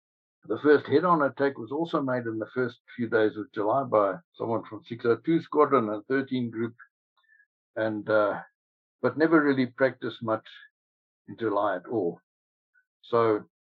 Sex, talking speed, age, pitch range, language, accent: male, 150 wpm, 60-79, 115-145 Hz, English, South African